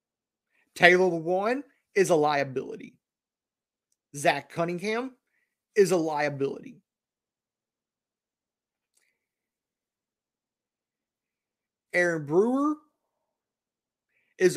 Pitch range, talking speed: 155-210 Hz, 55 wpm